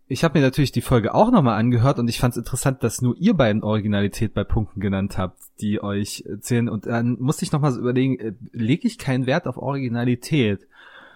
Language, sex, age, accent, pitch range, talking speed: German, male, 30-49, German, 115-135 Hz, 210 wpm